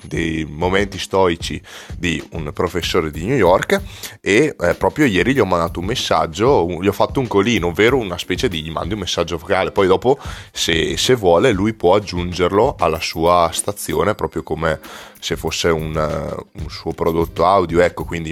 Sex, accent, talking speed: male, native, 175 wpm